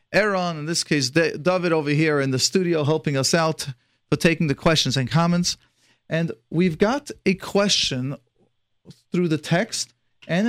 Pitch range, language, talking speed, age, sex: 130-175 Hz, English, 160 wpm, 40-59, male